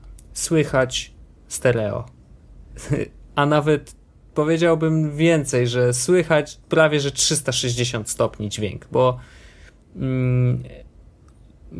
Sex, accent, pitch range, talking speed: male, native, 120-150 Hz, 75 wpm